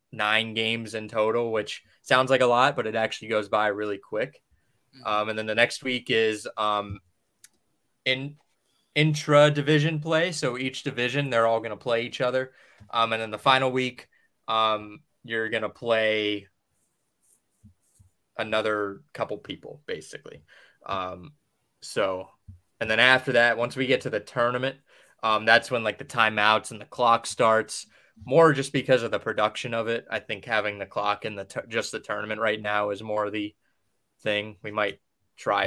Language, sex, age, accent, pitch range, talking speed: English, male, 20-39, American, 105-135 Hz, 170 wpm